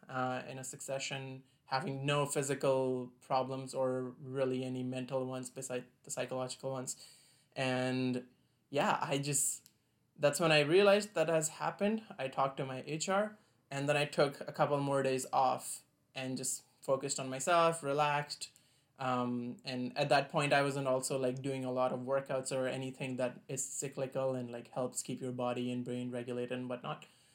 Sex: male